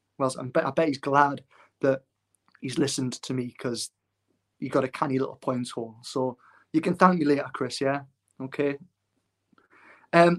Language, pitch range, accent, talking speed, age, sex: English, 130-145 Hz, British, 160 wpm, 20-39, male